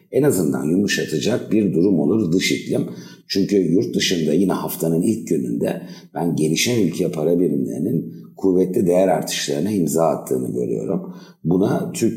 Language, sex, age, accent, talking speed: Turkish, male, 60-79, native, 140 wpm